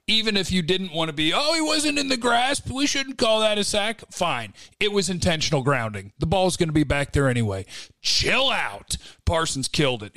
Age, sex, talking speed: 40-59, male, 225 wpm